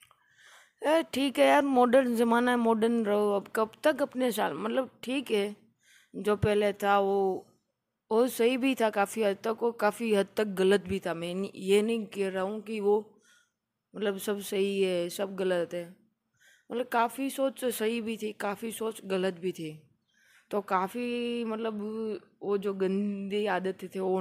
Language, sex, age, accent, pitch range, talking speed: Hindi, female, 20-39, native, 180-220 Hz, 175 wpm